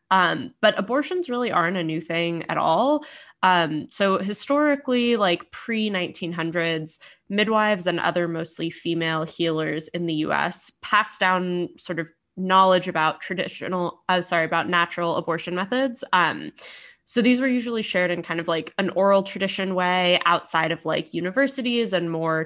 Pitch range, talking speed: 165-210 Hz, 160 wpm